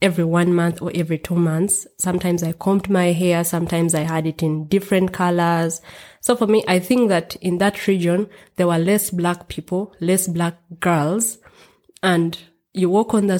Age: 20-39